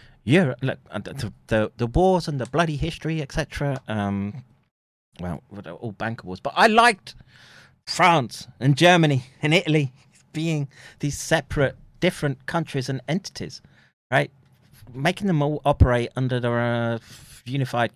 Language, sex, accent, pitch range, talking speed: English, male, British, 100-140 Hz, 130 wpm